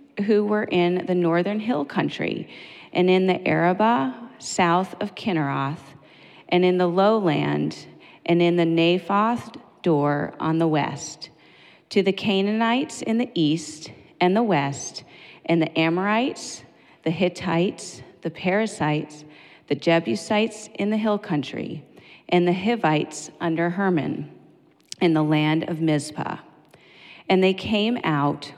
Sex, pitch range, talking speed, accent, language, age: female, 155-195 Hz, 130 wpm, American, English, 40-59